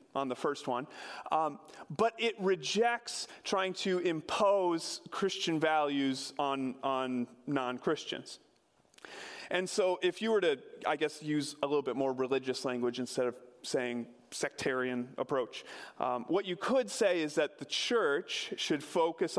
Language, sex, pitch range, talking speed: English, male, 145-220 Hz, 145 wpm